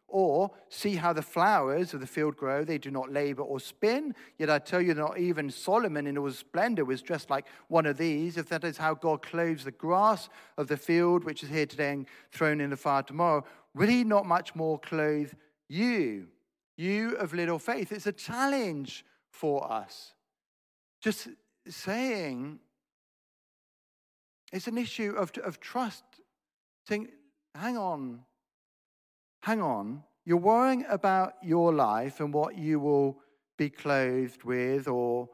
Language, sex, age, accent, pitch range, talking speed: English, male, 50-69, British, 135-185 Hz, 160 wpm